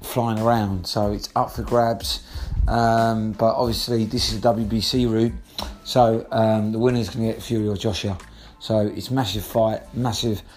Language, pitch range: English, 110-130 Hz